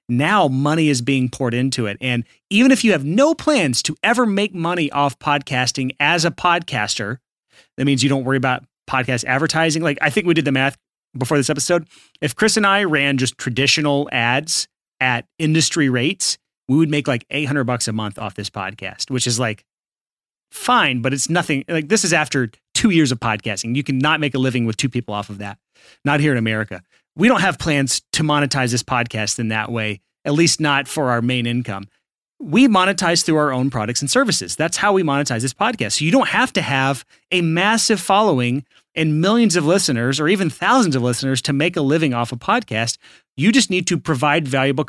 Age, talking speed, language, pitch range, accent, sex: 30-49, 210 wpm, English, 125-170 Hz, American, male